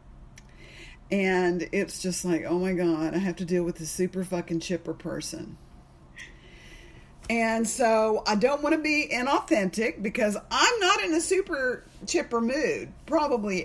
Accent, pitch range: American, 175-230 Hz